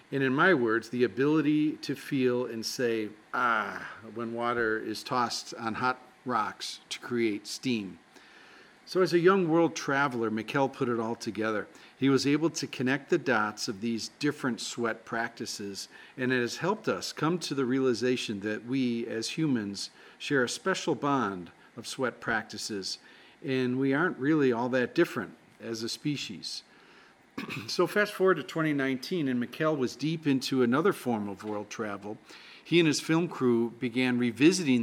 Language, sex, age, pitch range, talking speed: English, male, 50-69, 115-145 Hz, 165 wpm